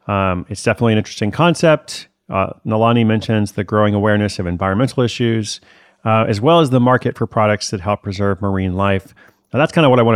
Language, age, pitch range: English, 30-49, 100-120 Hz